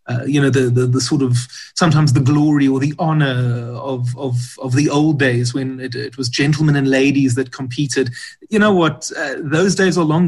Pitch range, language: 130-150 Hz, English